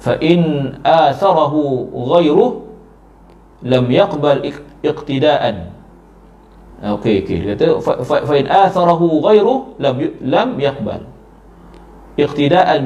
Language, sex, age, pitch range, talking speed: Malay, male, 50-69, 120-165 Hz, 100 wpm